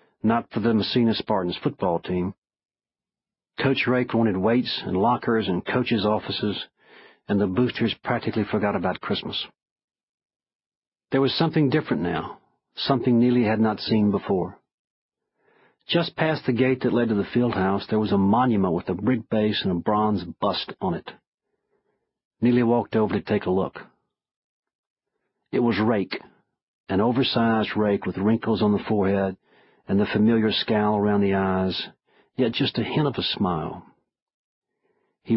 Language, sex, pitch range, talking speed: English, male, 100-120 Hz, 155 wpm